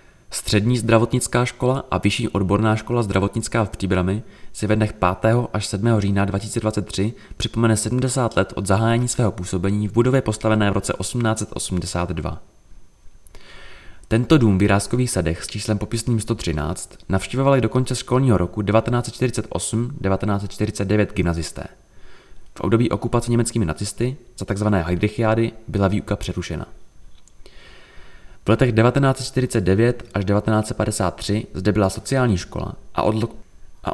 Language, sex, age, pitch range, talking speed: Czech, male, 20-39, 95-120 Hz, 120 wpm